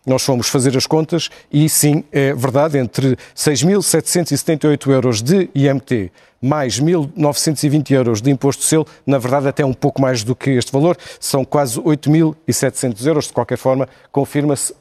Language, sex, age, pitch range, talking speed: Portuguese, male, 50-69, 135-160 Hz, 160 wpm